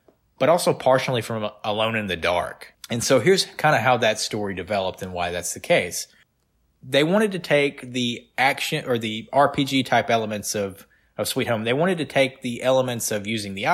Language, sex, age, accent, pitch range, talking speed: English, male, 20-39, American, 110-140 Hz, 200 wpm